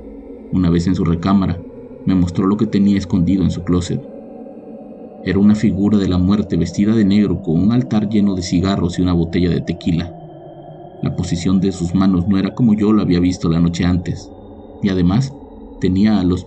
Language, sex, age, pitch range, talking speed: Spanish, male, 40-59, 95-115 Hz, 195 wpm